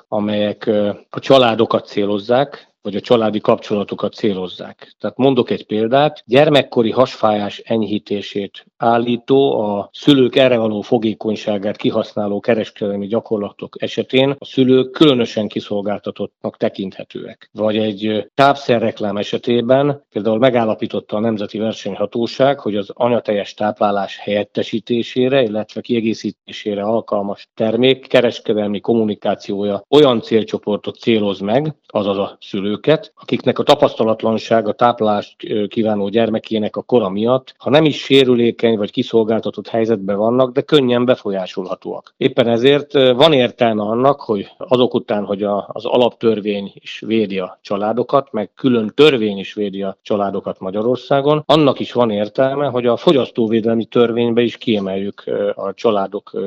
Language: Hungarian